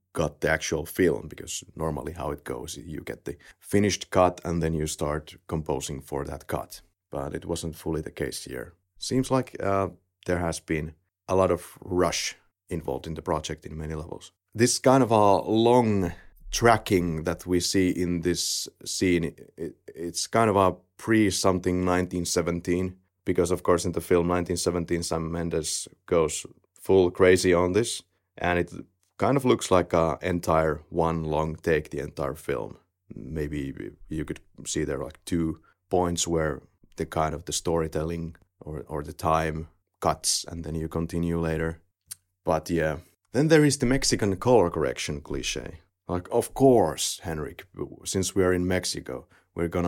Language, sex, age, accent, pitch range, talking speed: English, male, 30-49, Finnish, 80-95 Hz, 165 wpm